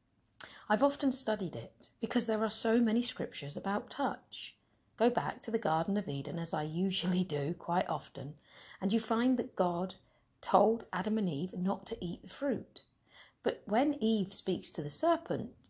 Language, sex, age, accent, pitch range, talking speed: English, female, 40-59, British, 130-215 Hz, 175 wpm